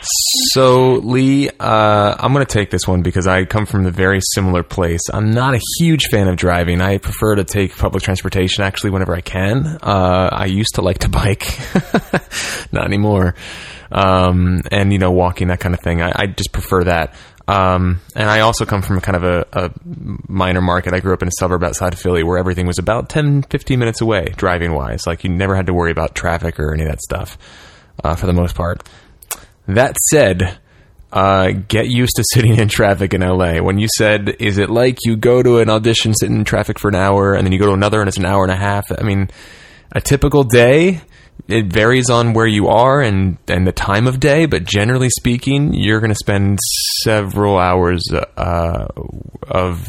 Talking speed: 210 wpm